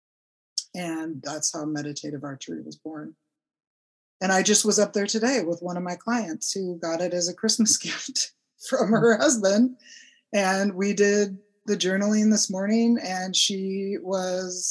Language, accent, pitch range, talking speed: English, American, 160-215 Hz, 160 wpm